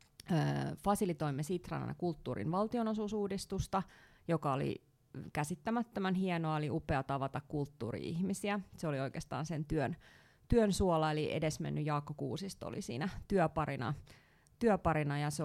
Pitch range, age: 145-185 Hz, 30-49